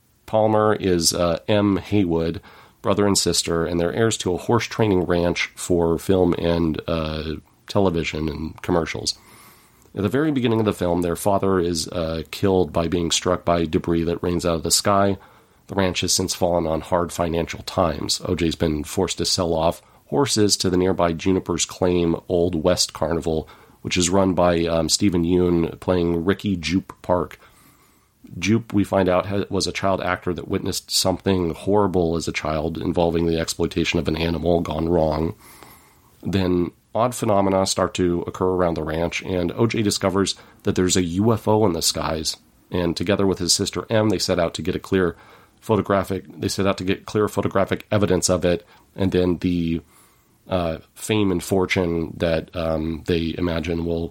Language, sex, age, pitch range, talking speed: English, male, 40-59, 85-100 Hz, 175 wpm